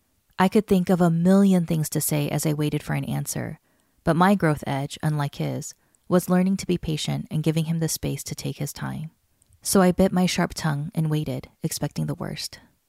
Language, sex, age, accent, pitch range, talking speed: English, female, 20-39, American, 150-185 Hz, 215 wpm